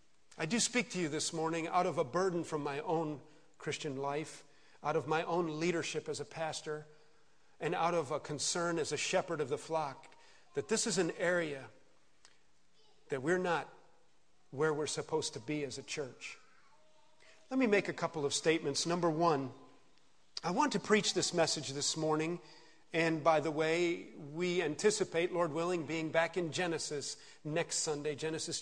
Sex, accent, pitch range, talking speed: male, American, 145-170 Hz, 175 wpm